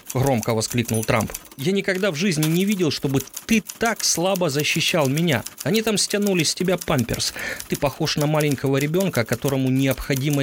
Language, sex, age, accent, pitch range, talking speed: Ukrainian, male, 30-49, native, 115-155 Hz, 160 wpm